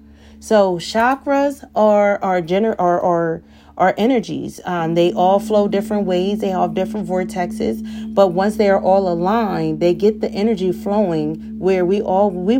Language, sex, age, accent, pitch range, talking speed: English, female, 30-49, American, 175-220 Hz, 155 wpm